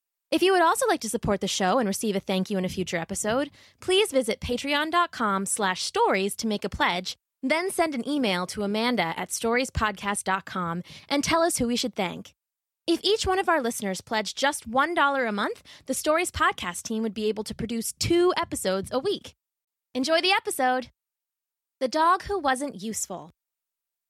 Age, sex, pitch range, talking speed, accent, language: 20-39, female, 195-300 Hz, 185 wpm, American, English